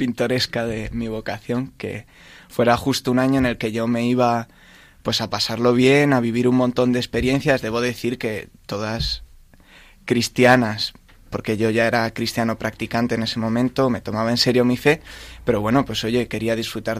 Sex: male